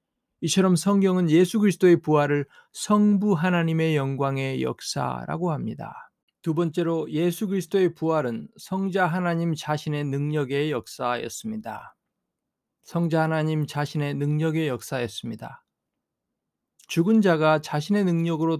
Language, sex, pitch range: Korean, male, 150-185 Hz